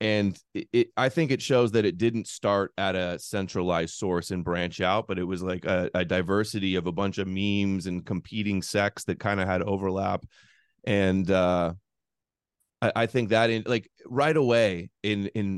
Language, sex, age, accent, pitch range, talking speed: English, male, 30-49, American, 95-110 Hz, 190 wpm